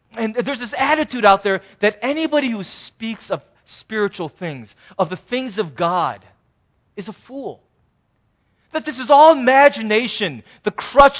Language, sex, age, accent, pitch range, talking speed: English, male, 30-49, American, 175-240 Hz, 150 wpm